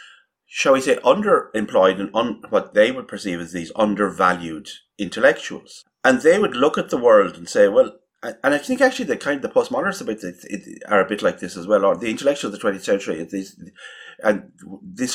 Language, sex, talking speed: English, male, 195 wpm